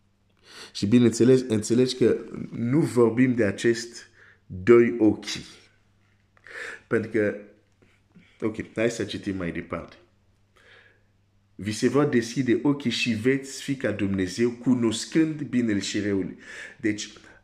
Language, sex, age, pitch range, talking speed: Romanian, male, 50-69, 100-120 Hz, 115 wpm